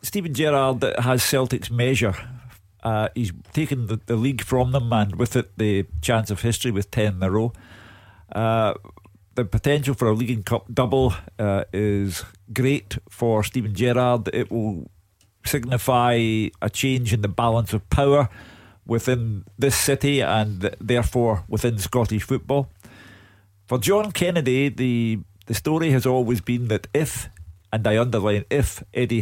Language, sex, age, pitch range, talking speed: English, male, 50-69, 100-125 Hz, 150 wpm